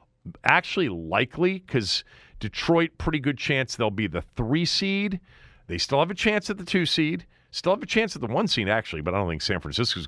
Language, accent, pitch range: English, American, 100-160 Hz